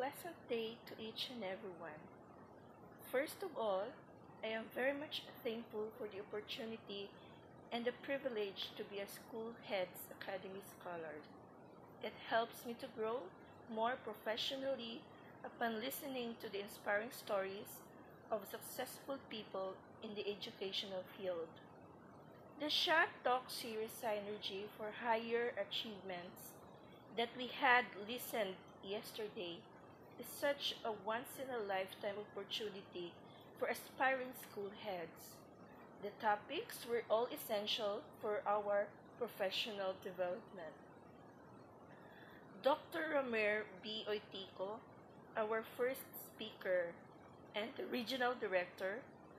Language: English